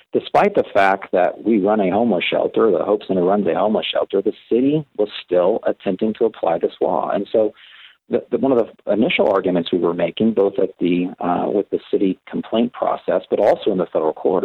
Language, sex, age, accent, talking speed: English, male, 40-59, American, 210 wpm